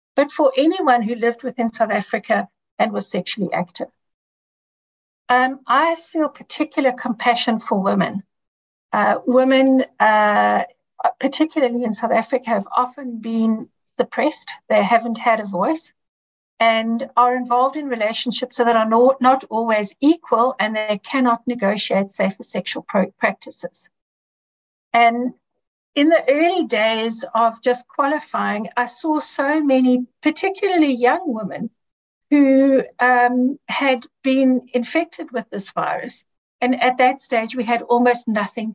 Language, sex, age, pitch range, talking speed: English, female, 60-79, 225-265 Hz, 130 wpm